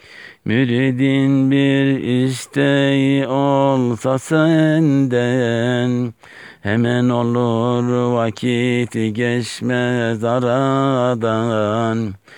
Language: Turkish